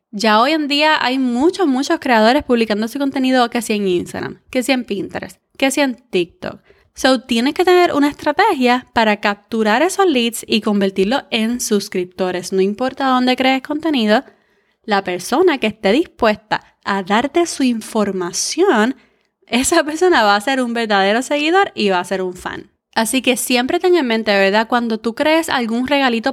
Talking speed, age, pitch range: 175 wpm, 20-39, 205-275 Hz